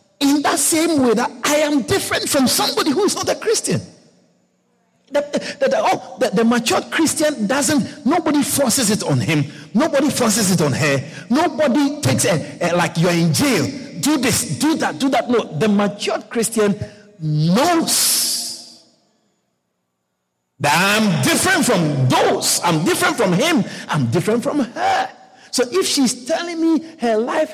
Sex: male